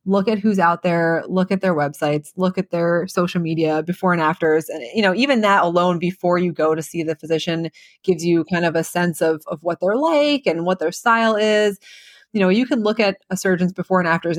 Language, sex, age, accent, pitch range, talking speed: English, female, 20-39, American, 165-190 Hz, 240 wpm